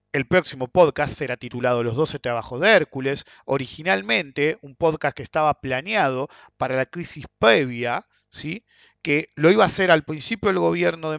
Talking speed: 165 wpm